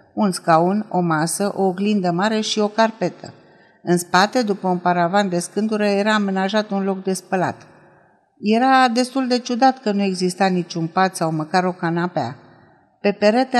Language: Romanian